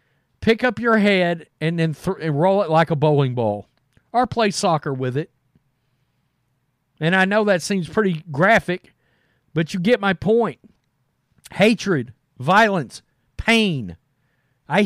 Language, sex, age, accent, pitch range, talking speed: English, male, 40-59, American, 130-190 Hz, 135 wpm